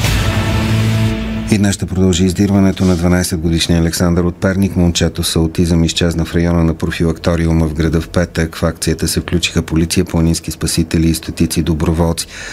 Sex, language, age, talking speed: male, Bulgarian, 40-59, 150 wpm